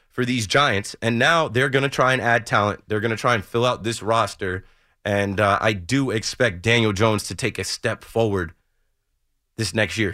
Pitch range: 115-150 Hz